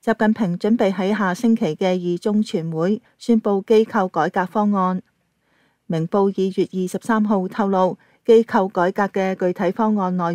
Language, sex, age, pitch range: Chinese, female, 30-49, 175-210 Hz